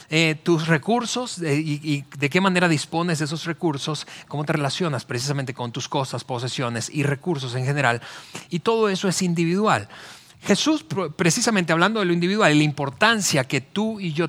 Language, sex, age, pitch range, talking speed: Spanish, male, 30-49, 140-190 Hz, 180 wpm